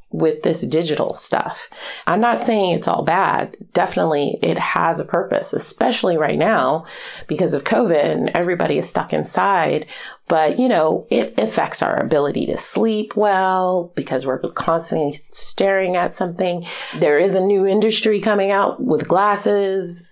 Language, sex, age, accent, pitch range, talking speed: English, female, 30-49, American, 165-200 Hz, 150 wpm